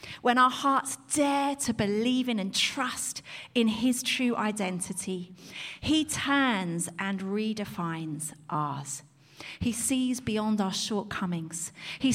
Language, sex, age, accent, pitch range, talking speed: English, female, 40-59, British, 170-250 Hz, 120 wpm